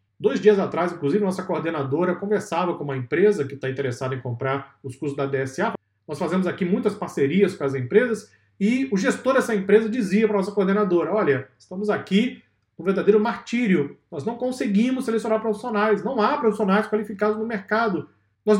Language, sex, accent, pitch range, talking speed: Portuguese, male, Brazilian, 170-225 Hz, 175 wpm